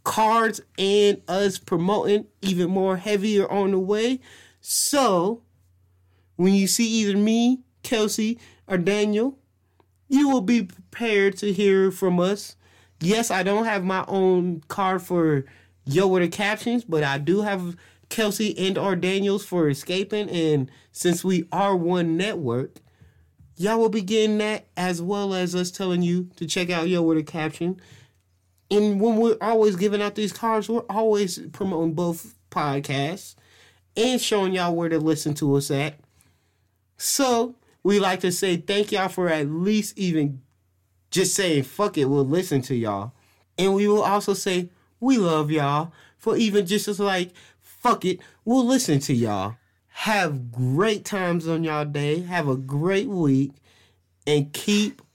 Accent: American